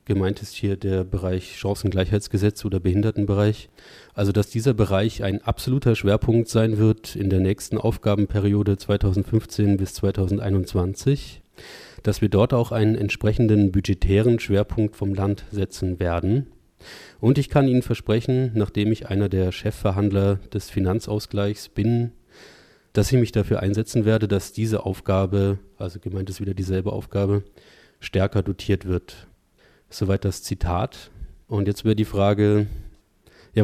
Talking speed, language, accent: 135 wpm, German, German